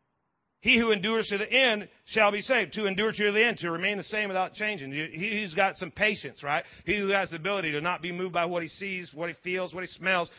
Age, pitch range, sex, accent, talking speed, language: 40-59, 170-210 Hz, male, American, 255 wpm, English